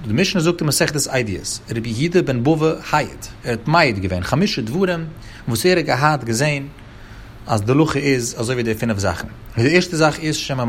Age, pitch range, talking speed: 30-49, 110-150 Hz, 170 wpm